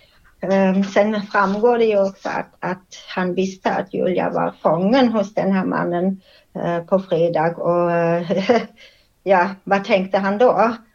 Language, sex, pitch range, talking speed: Swedish, female, 190-215 Hz, 135 wpm